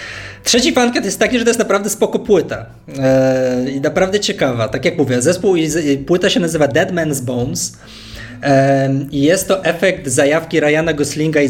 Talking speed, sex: 165 wpm, male